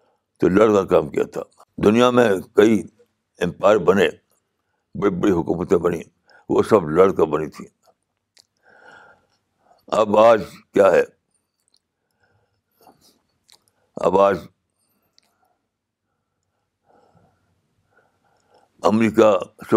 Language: Urdu